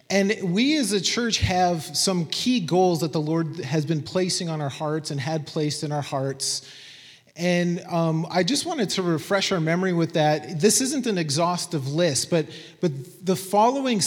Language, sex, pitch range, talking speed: English, male, 145-190 Hz, 190 wpm